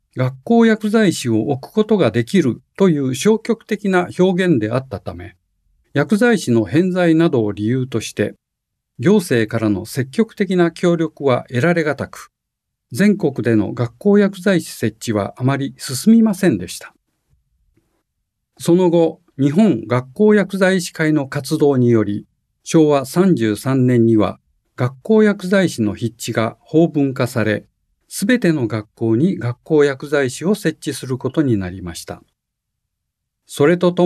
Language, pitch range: Japanese, 115-185 Hz